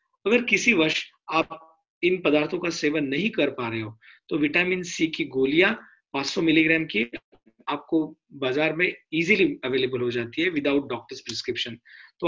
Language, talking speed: Hindi, 160 wpm